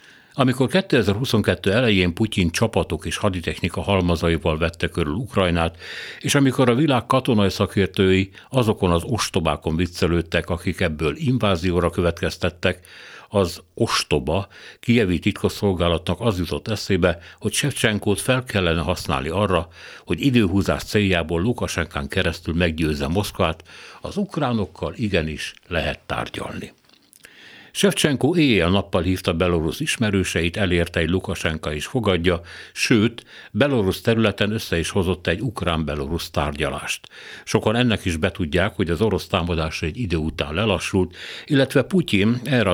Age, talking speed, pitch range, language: 60-79, 120 wpm, 85-105 Hz, Hungarian